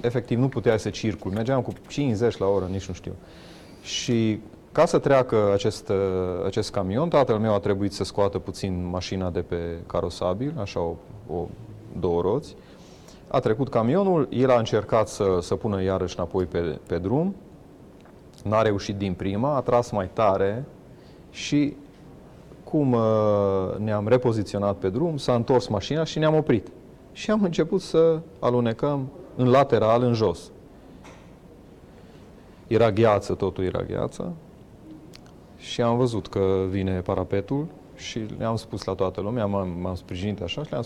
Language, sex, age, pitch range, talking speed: Romanian, male, 30-49, 95-125 Hz, 150 wpm